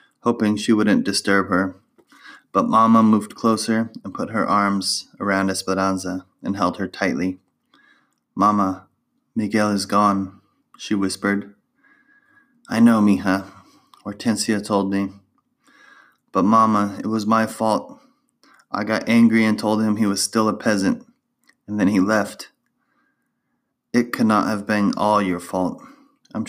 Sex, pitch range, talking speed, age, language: male, 100-115 Hz, 140 wpm, 20-39, English